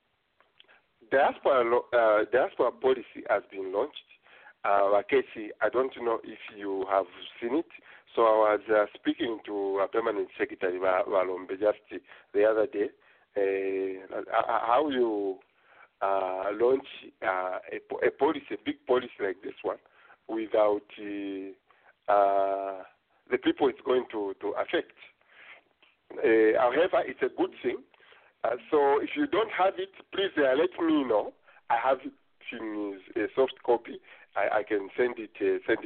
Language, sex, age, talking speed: English, male, 50-69, 140 wpm